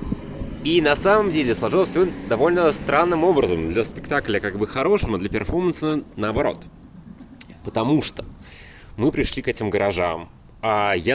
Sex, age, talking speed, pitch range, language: male, 20-39, 140 wpm, 100-140 Hz, Russian